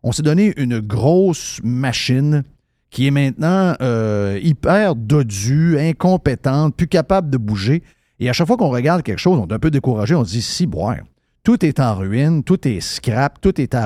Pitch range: 115-160 Hz